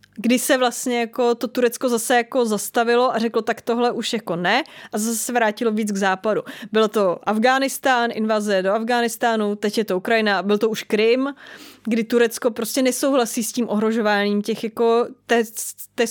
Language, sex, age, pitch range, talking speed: Czech, female, 20-39, 205-240 Hz, 180 wpm